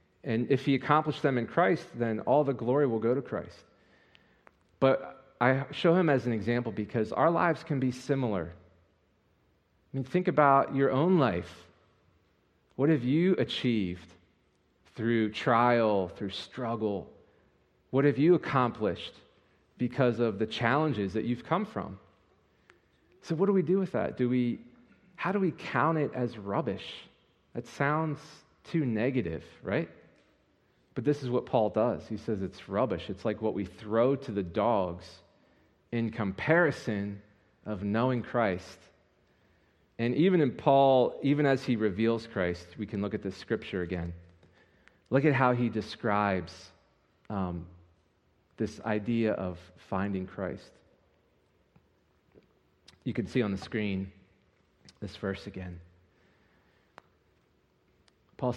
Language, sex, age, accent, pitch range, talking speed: English, male, 40-59, American, 95-135 Hz, 140 wpm